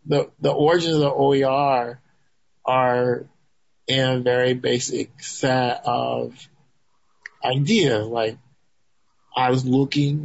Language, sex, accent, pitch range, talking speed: English, male, American, 125-150 Hz, 105 wpm